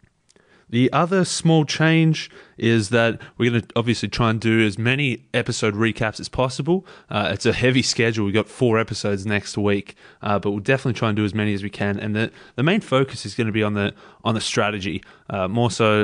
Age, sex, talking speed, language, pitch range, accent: 20-39, male, 220 wpm, English, 105-125 Hz, Australian